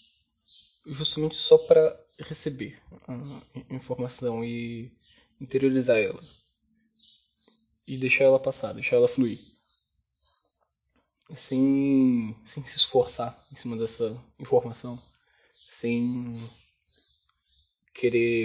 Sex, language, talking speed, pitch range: male, Portuguese, 85 wpm, 115-150 Hz